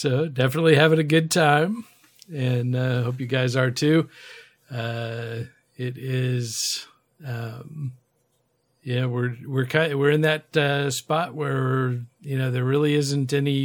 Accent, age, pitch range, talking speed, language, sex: American, 50-69, 120-135 Hz, 150 wpm, English, male